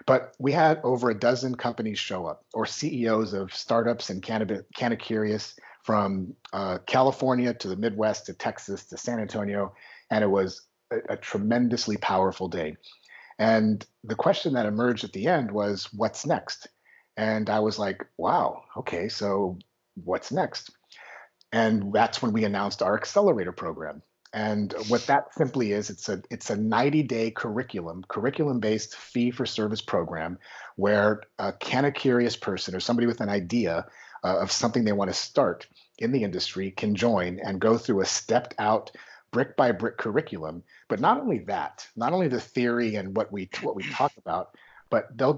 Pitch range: 100-120 Hz